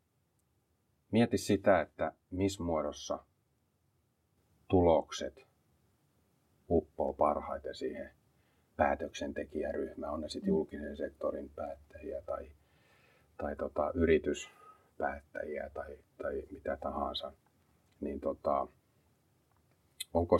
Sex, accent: male, native